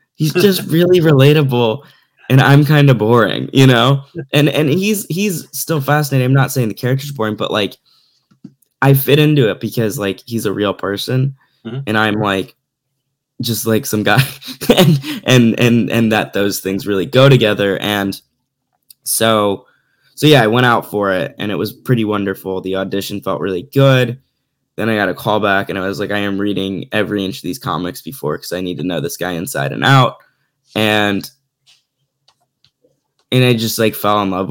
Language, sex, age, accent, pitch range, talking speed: English, male, 10-29, American, 100-135 Hz, 190 wpm